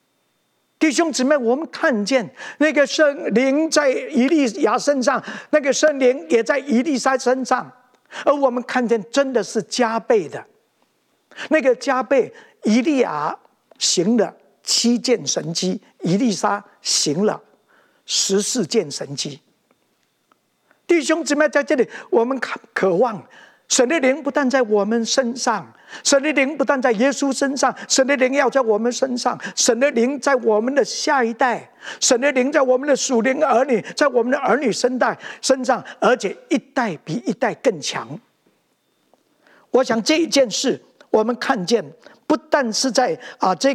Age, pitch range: 50-69, 230-285 Hz